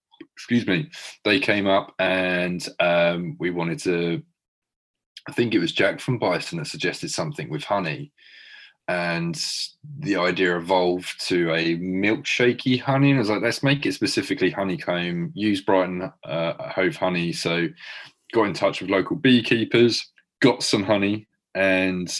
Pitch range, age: 85-115 Hz, 20-39